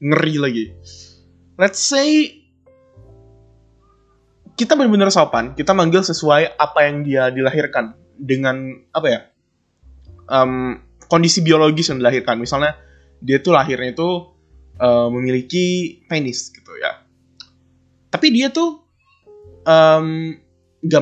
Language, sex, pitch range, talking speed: Indonesian, male, 120-195 Hz, 105 wpm